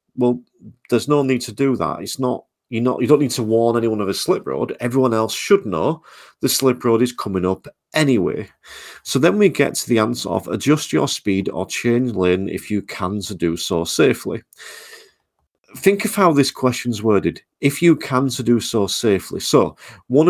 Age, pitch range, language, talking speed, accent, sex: 40-59, 100-135 Hz, English, 200 wpm, British, male